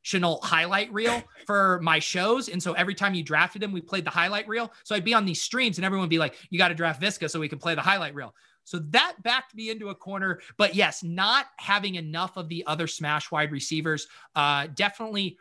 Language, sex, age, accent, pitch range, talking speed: English, male, 30-49, American, 155-190 Hz, 240 wpm